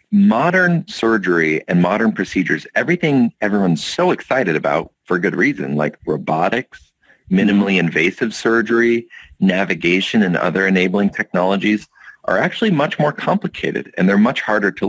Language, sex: English, male